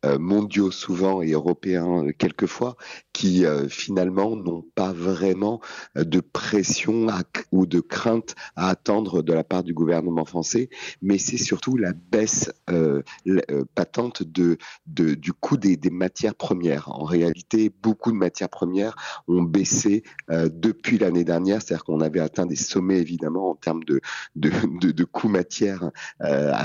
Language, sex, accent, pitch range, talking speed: German, male, French, 85-100 Hz, 155 wpm